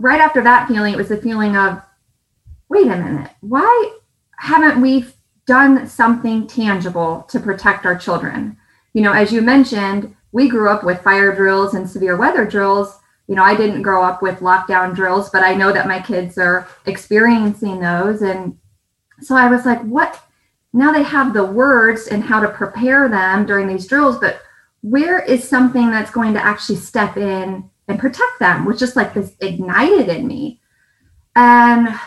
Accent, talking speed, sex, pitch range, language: American, 180 wpm, female, 195-250 Hz, English